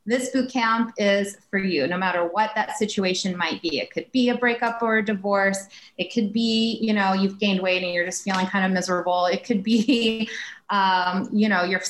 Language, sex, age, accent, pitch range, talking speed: English, female, 30-49, American, 190-235 Hz, 215 wpm